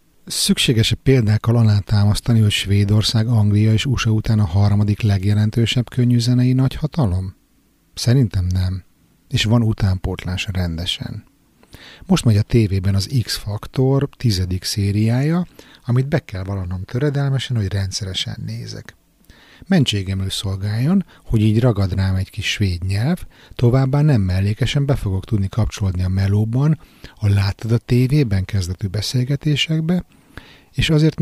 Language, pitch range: Hungarian, 95-120 Hz